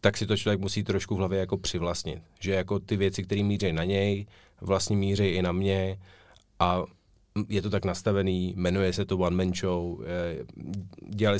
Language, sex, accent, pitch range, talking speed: Czech, male, native, 90-100 Hz, 175 wpm